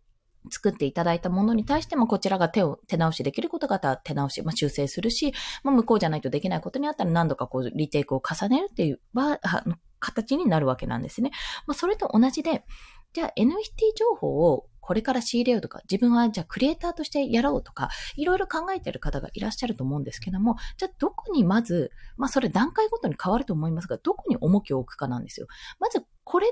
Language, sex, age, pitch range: Japanese, female, 20-39, 185-305 Hz